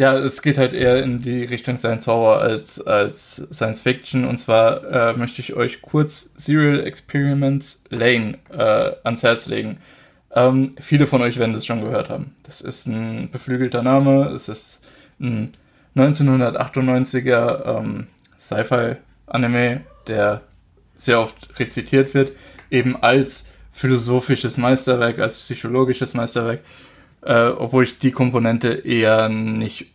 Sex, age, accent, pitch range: male, 20-39, German, 115-130 Hz